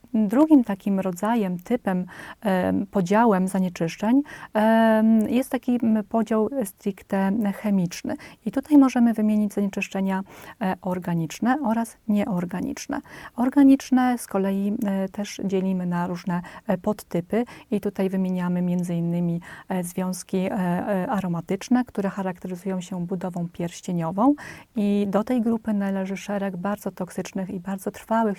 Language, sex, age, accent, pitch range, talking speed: Polish, female, 30-49, native, 185-220 Hz, 105 wpm